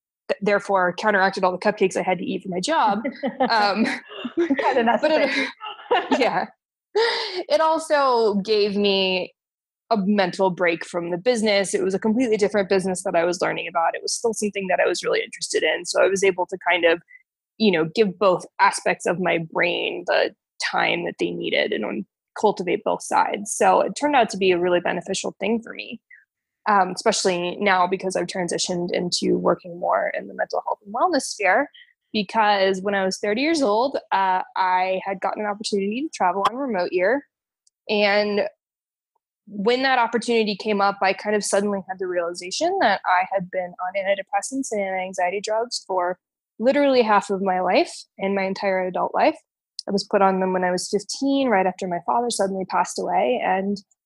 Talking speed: 185 wpm